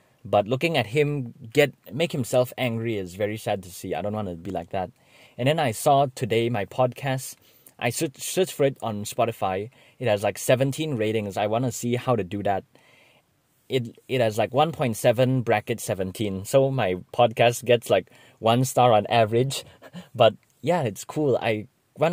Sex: male